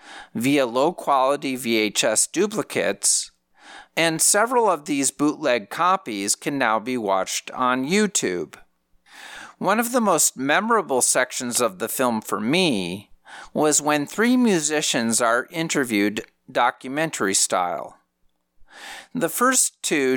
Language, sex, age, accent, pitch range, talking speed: English, male, 50-69, American, 120-165 Hz, 115 wpm